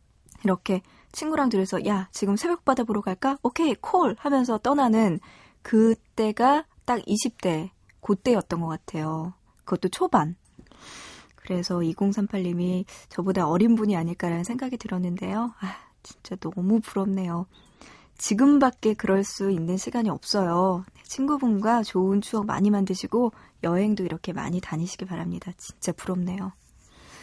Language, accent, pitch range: Korean, native, 180-240 Hz